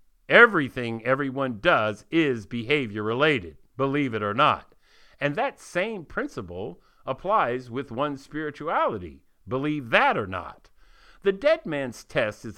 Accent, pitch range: American, 115-180 Hz